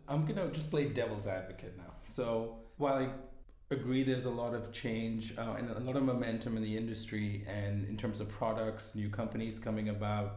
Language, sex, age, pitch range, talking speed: English, male, 30-49, 105-125 Hz, 205 wpm